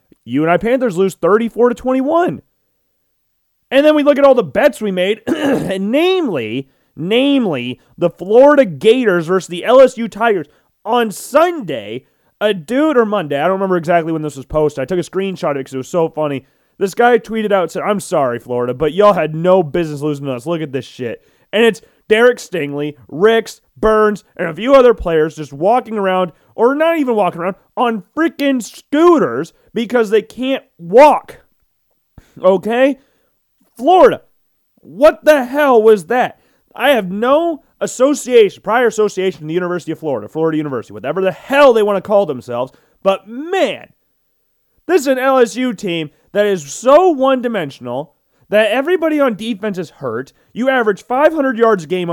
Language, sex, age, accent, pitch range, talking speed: English, male, 30-49, American, 175-260 Hz, 170 wpm